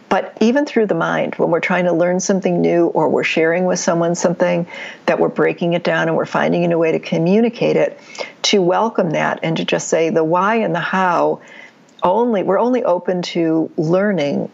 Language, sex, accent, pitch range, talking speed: English, female, American, 155-205 Hz, 200 wpm